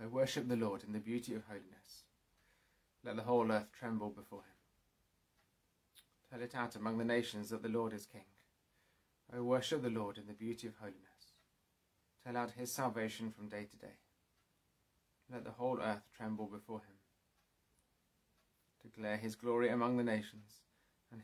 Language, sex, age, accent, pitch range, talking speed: English, male, 30-49, British, 105-120 Hz, 165 wpm